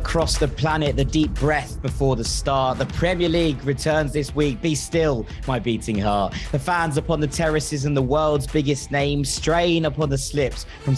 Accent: British